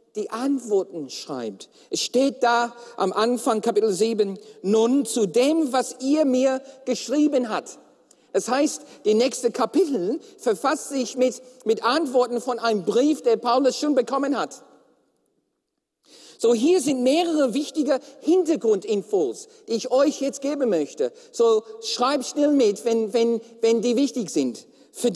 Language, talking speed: German, 140 wpm